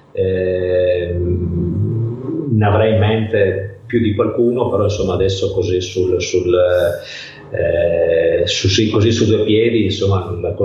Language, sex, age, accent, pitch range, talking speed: Italian, male, 30-49, native, 95-120 Hz, 130 wpm